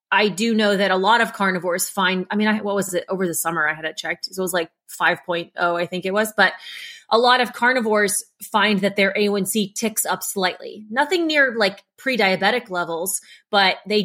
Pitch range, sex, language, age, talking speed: 185-215 Hz, female, English, 30-49, 215 wpm